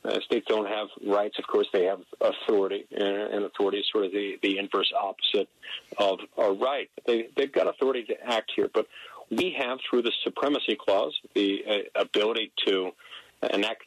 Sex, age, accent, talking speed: male, 50-69, American, 180 wpm